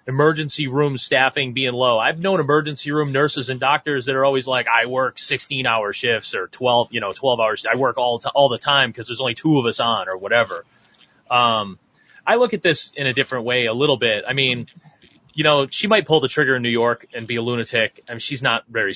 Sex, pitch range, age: male, 120-155 Hz, 30-49